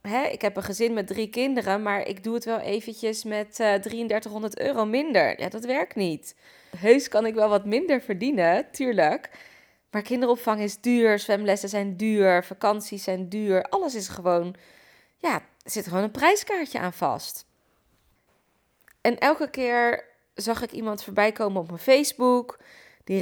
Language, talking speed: Dutch, 165 wpm